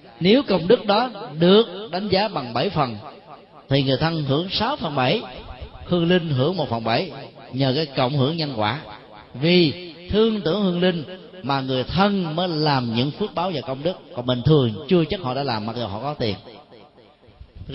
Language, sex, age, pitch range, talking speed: Vietnamese, male, 30-49, 140-195 Hz, 200 wpm